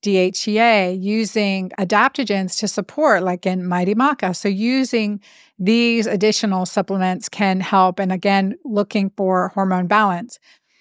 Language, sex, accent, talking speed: English, female, American, 120 wpm